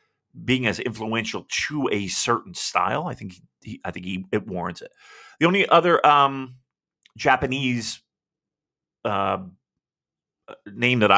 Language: English